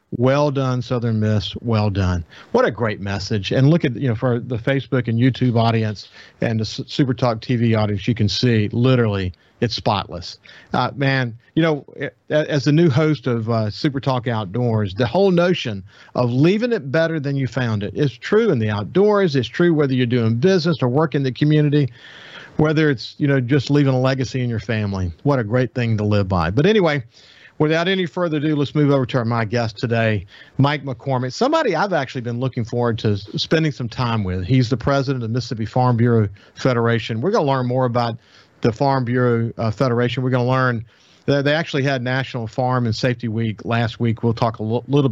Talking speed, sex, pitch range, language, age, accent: 210 wpm, male, 115-140 Hz, English, 50-69, American